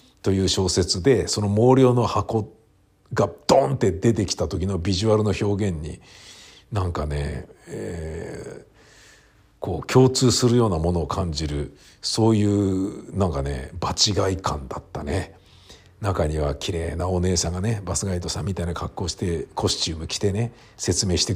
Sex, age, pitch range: male, 50-69, 85-110 Hz